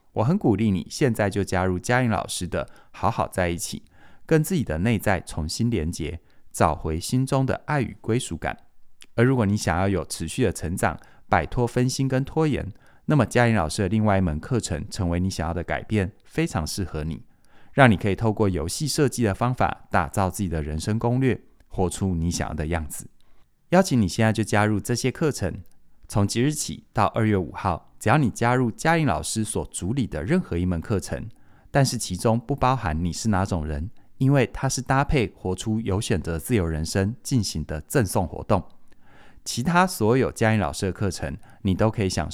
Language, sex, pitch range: Chinese, male, 85-120 Hz